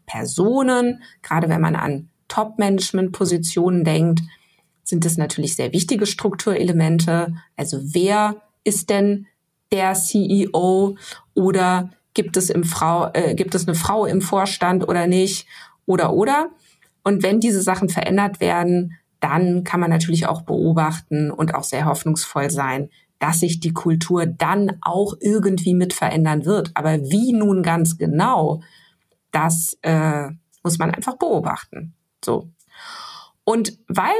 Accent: German